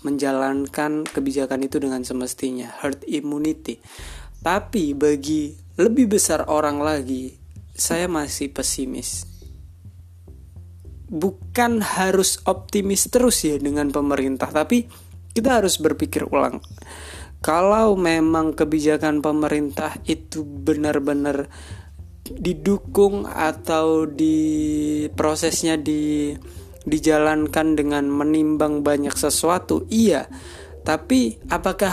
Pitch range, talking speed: 125-165 Hz, 85 wpm